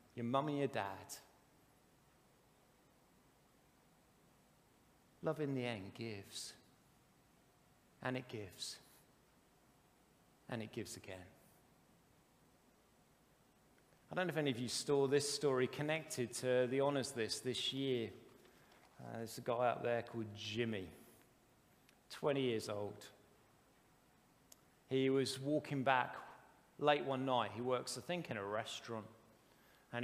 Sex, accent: male, British